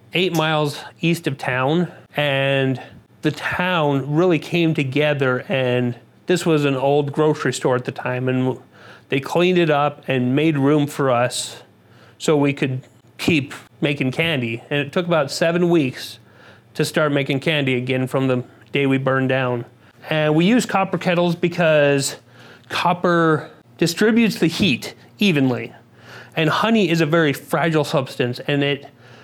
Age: 30-49